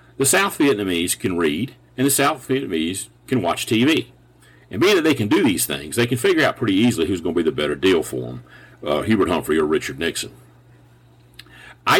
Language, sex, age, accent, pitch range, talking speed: English, male, 50-69, American, 90-125 Hz, 210 wpm